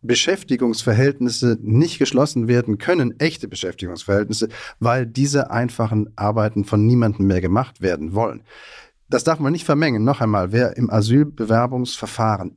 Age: 40-59